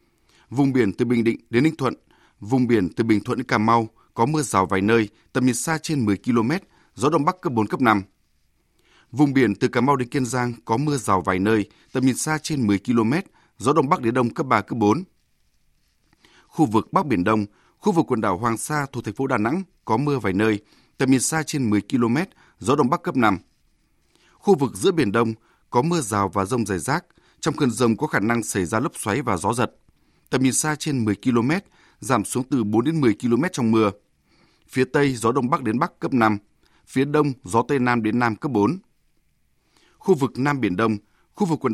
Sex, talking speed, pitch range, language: male, 230 wpm, 110-140 Hz, Vietnamese